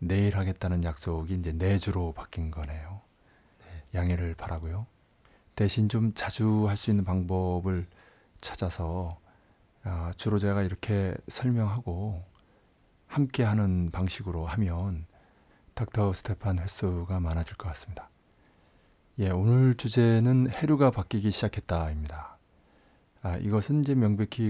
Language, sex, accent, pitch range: Korean, male, native, 90-110 Hz